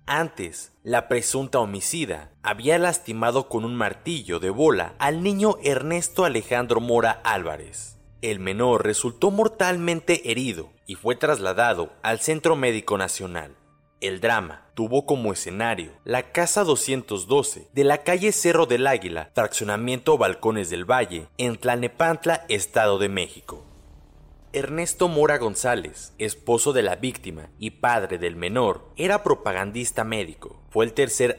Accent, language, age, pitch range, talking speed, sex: Mexican, Spanish, 30-49, 95-150 Hz, 130 wpm, male